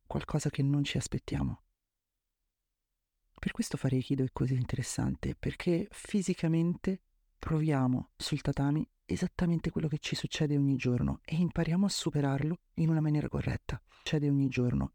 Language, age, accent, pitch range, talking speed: Italian, 30-49, native, 125-165 Hz, 140 wpm